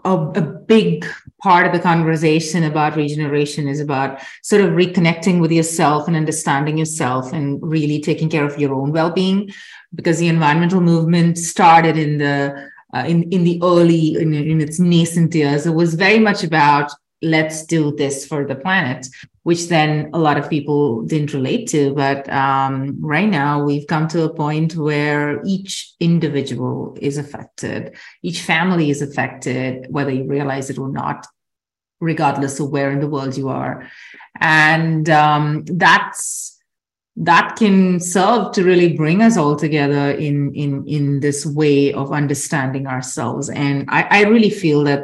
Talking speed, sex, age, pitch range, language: 160 wpm, female, 30-49, 145-175 Hz, English